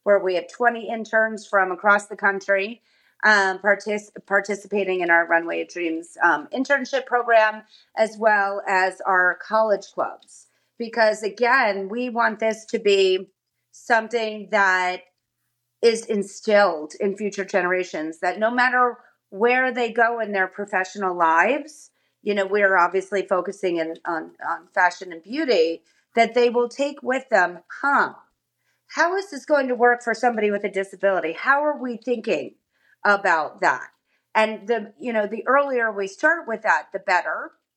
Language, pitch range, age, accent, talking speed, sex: English, 180-225 Hz, 30-49, American, 150 wpm, female